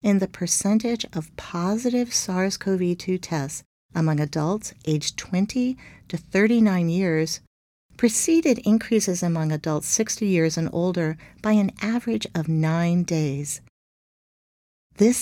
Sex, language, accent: female, English, American